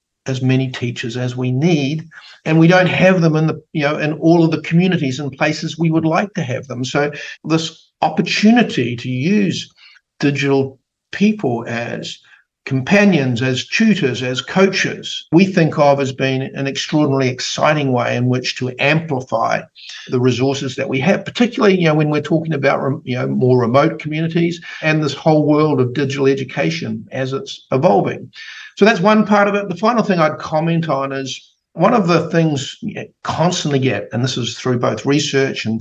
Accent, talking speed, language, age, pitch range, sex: Australian, 180 wpm, English, 50-69, 130-170 Hz, male